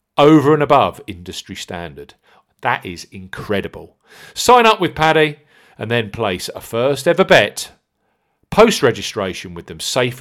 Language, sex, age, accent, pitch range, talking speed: English, male, 40-59, British, 105-150 Hz, 135 wpm